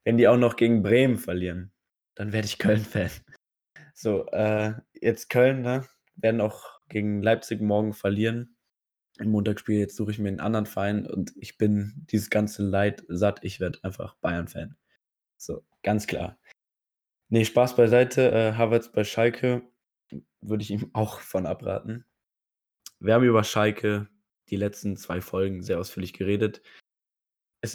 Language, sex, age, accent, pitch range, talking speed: German, male, 20-39, German, 100-110 Hz, 150 wpm